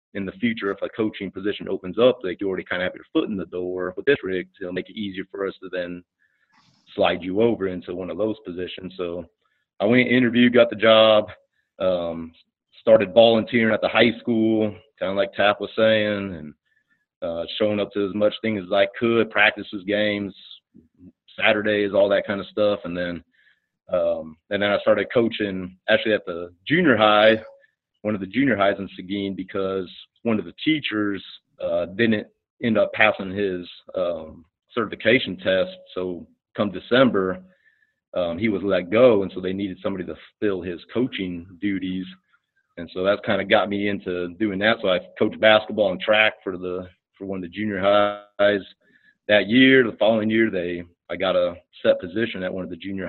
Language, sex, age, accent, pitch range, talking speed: English, male, 30-49, American, 90-110 Hz, 195 wpm